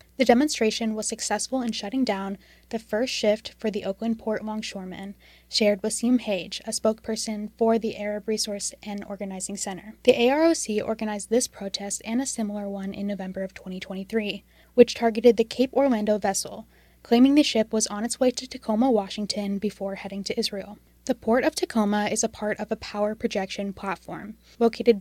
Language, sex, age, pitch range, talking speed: English, female, 10-29, 200-230 Hz, 180 wpm